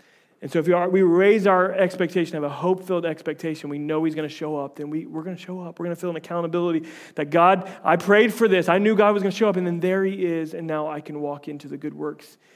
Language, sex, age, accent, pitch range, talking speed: English, male, 30-49, American, 145-175 Hz, 290 wpm